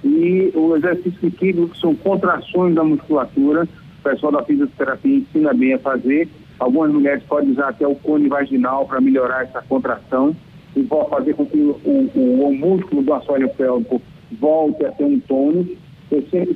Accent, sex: Brazilian, male